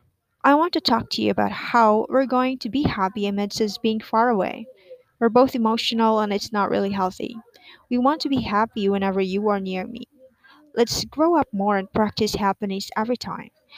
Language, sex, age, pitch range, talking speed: English, female, 20-39, 210-265 Hz, 195 wpm